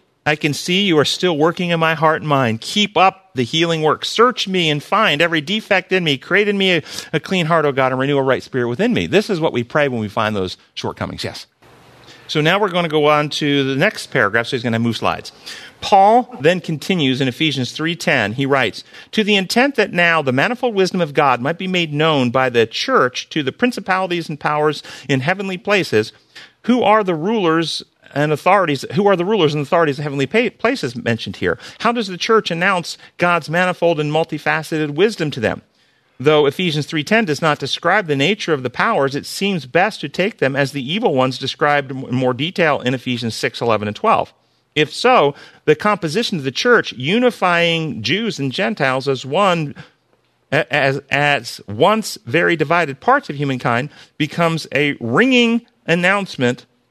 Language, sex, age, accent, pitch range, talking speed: English, male, 40-59, American, 135-185 Hz, 200 wpm